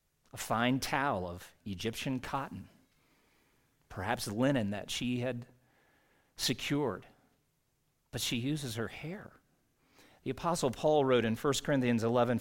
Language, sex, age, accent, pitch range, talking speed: English, male, 50-69, American, 120-150 Hz, 120 wpm